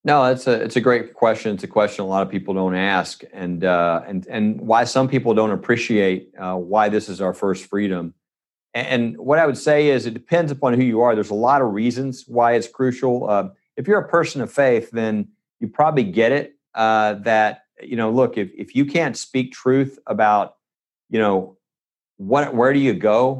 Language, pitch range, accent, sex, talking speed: English, 105-135 Hz, American, male, 215 wpm